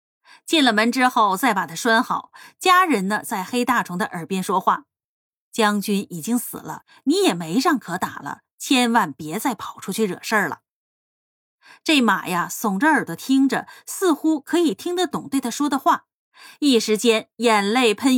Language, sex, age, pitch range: Chinese, female, 20-39, 210-290 Hz